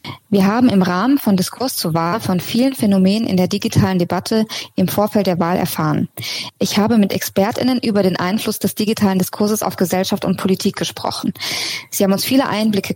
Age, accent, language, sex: 20-39, German, German, female